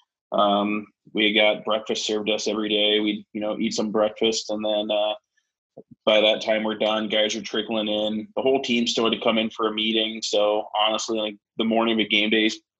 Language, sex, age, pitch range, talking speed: English, male, 20-39, 105-110 Hz, 210 wpm